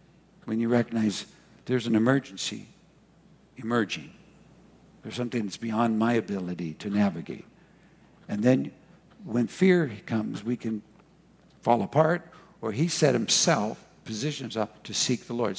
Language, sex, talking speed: English, male, 130 wpm